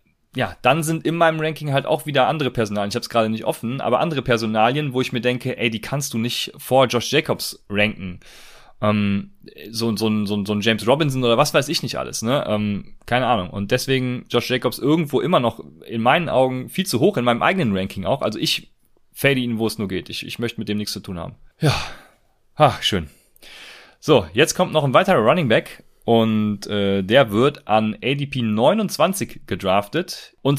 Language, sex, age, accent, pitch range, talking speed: German, male, 30-49, German, 110-140 Hz, 210 wpm